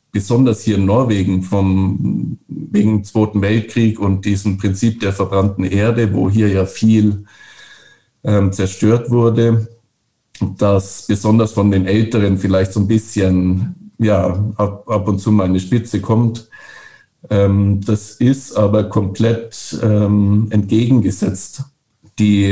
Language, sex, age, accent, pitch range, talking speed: German, male, 50-69, German, 100-115 Hz, 125 wpm